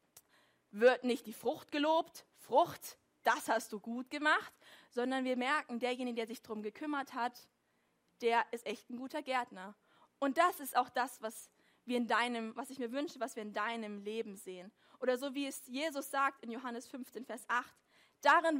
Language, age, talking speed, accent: German, 20-39, 185 wpm, German